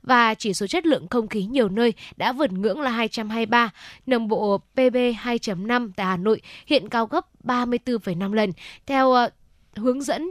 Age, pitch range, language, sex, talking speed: 10-29, 200-250 Hz, Vietnamese, female, 180 wpm